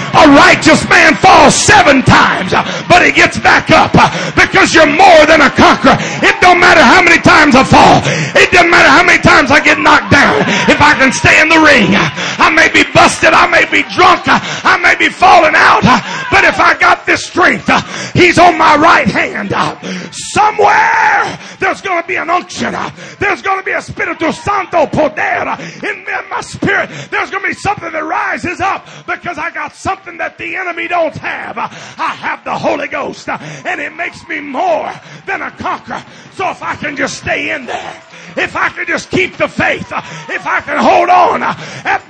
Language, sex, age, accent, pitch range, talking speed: English, male, 30-49, American, 325-400 Hz, 195 wpm